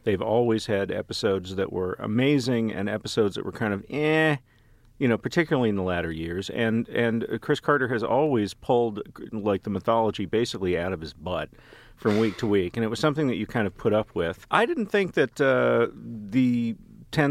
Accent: American